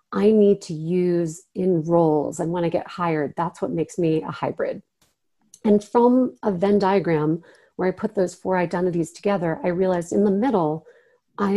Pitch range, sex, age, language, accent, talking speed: 180-230 Hz, female, 40-59, English, American, 180 wpm